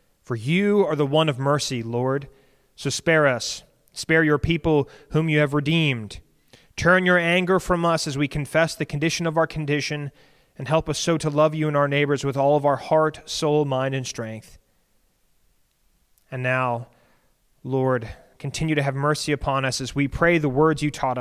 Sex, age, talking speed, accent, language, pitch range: male, 30-49, 185 wpm, American, English, 120-150 Hz